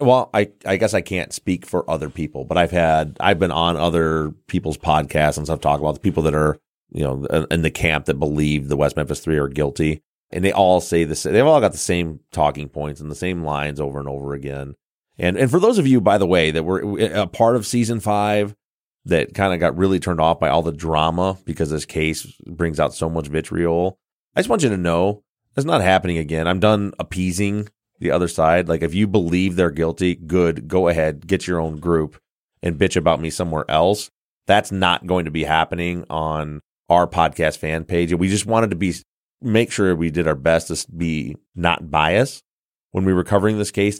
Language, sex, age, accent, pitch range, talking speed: English, male, 30-49, American, 80-95 Hz, 220 wpm